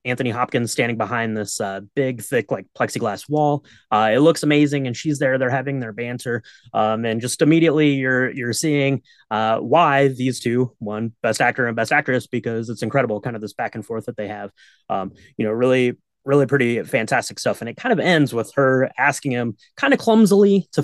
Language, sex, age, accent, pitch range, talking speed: English, male, 20-39, American, 115-150 Hz, 205 wpm